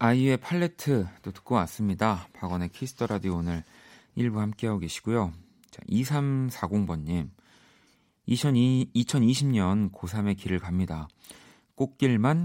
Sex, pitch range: male, 90-120 Hz